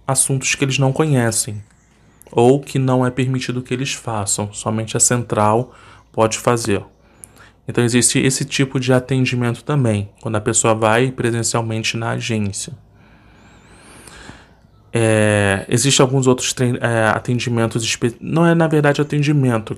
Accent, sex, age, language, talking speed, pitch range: Brazilian, male, 20-39, Portuguese, 135 wpm, 110-135 Hz